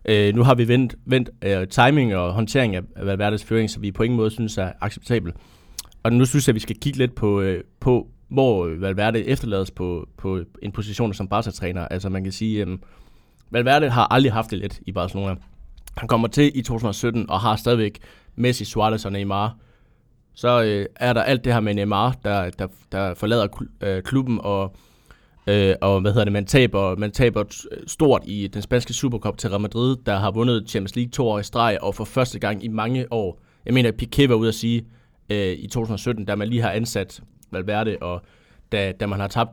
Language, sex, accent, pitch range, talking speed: Danish, male, native, 100-120 Hz, 215 wpm